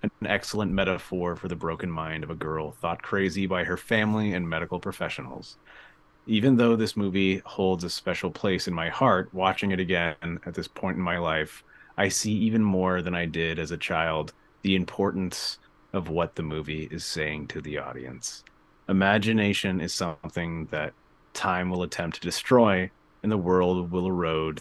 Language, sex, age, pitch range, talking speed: English, male, 30-49, 85-105 Hz, 180 wpm